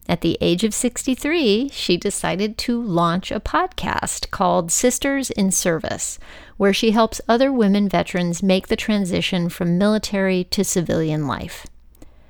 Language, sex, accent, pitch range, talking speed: English, female, American, 175-215 Hz, 140 wpm